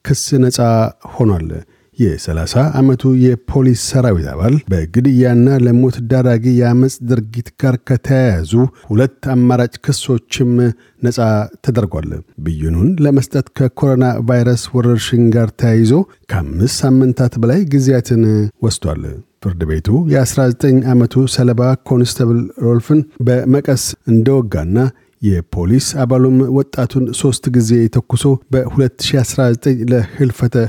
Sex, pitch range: male, 115-130 Hz